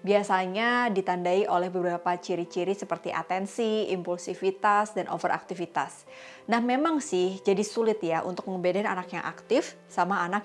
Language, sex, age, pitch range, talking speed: Indonesian, female, 20-39, 175-215 Hz, 130 wpm